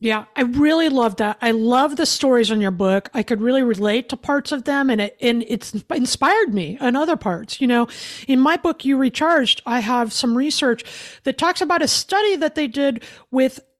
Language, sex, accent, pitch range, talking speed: English, female, American, 235-320 Hz, 215 wpm